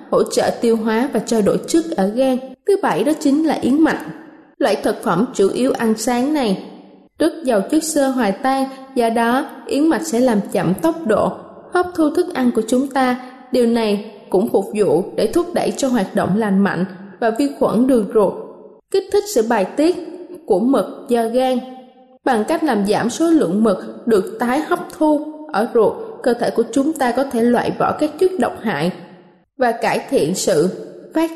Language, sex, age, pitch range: Thai, female, 20-39, 225-305 Hz